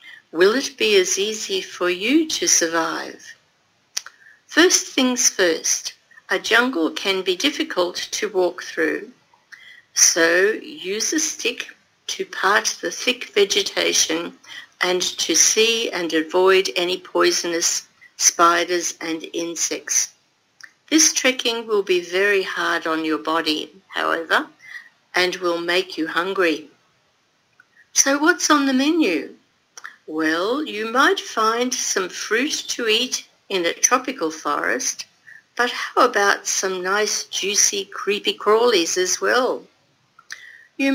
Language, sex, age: Japanese, female, 50-69